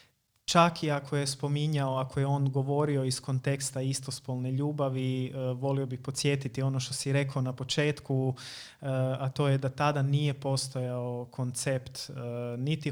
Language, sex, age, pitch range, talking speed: Croatian, male, 30-49, 130-145 Hz, 145 wpm